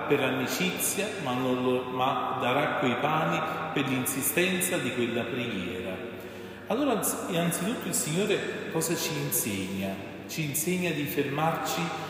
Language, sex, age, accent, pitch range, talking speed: Italian, male, 40-59, native, 130-160 Hz, 115 wpm